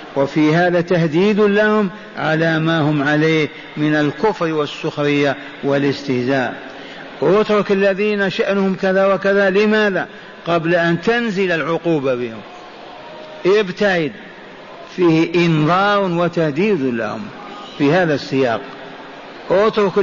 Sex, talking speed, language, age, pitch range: male, 95 wpm, Arabic, 50-69, 150-190 Hz